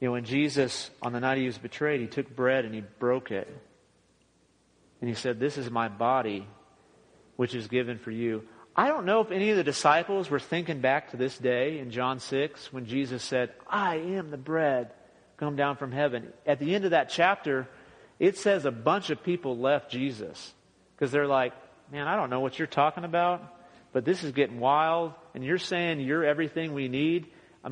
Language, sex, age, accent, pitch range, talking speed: English, male, 40-59, American, 125-155 Hz, 205 wpm